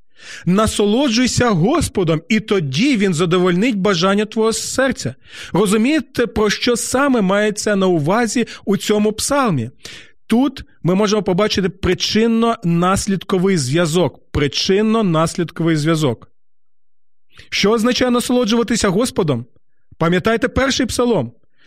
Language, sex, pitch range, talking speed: Ukrainian, male, 175-230 Hz, 95 wpm